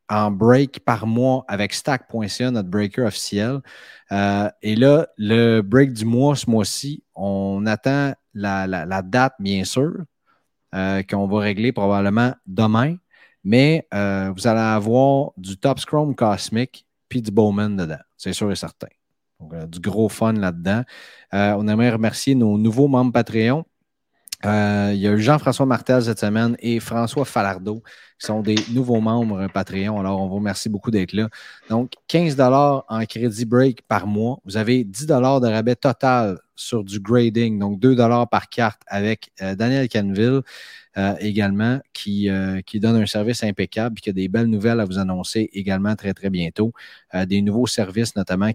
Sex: male